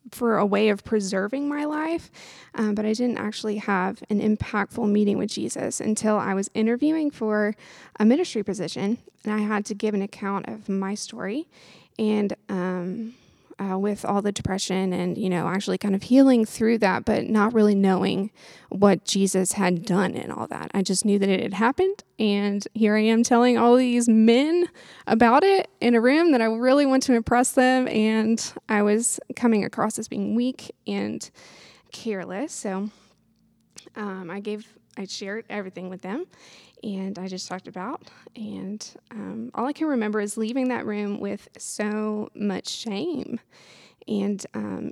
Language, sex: English, female